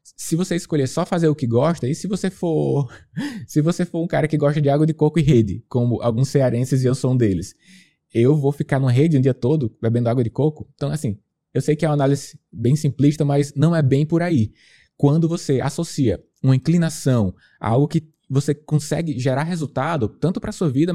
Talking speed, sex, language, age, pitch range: 225 wpm, male, Portuguese, 20-39, 125-160 Hz